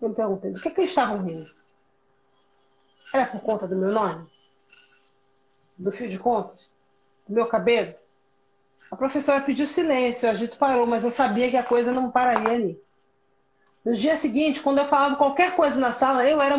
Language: Portuguese